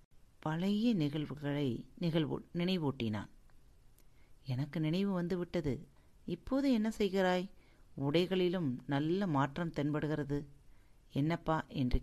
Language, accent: Tamil, native